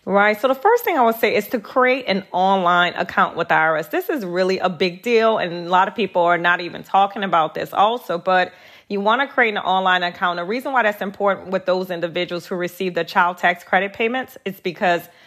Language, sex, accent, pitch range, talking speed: English, female, American, 180-220 Hz, 230 wpm